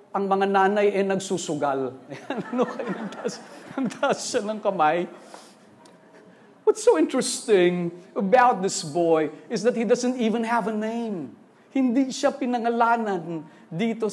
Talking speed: 115 wpm